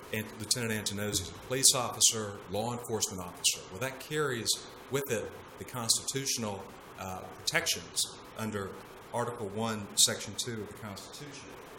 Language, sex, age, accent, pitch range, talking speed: English, male, 50-69, American, 100-120 Hz, 135 wpm